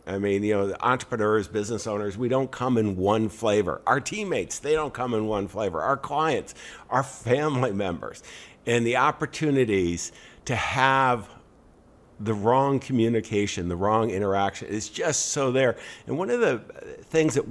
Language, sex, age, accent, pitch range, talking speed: English, male, 50-69, American, 105-135 Hz, 165 wpm